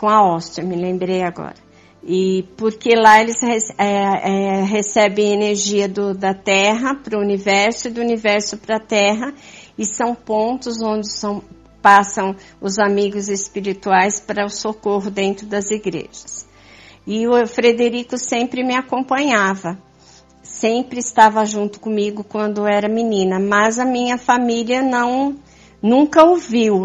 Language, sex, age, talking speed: Portuguese, female, 50-69, 135 wpm